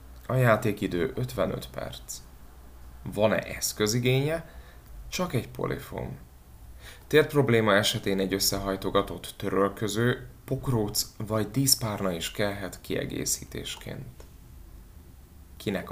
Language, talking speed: Hungarian, 85 wpm